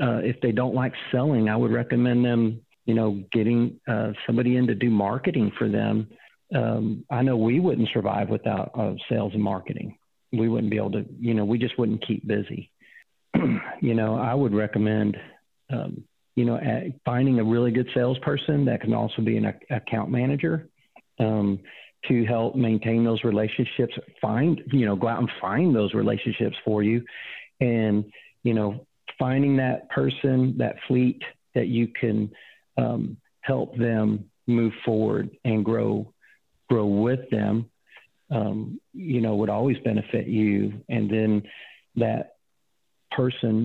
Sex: male